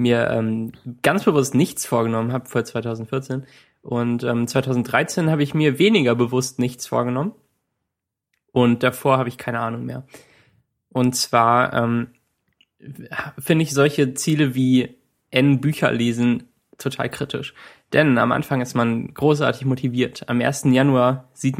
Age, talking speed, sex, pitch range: 20-39, 135 wpm, male, 120-135 Hz